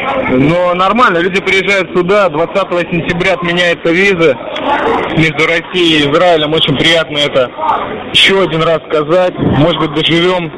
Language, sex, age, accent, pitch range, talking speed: Russian, male, 20-39, native, 160-195 Hz, 130 wpm